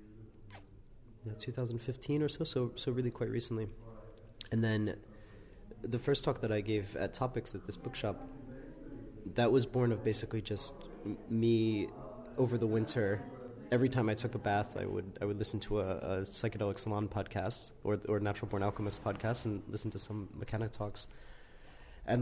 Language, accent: English, American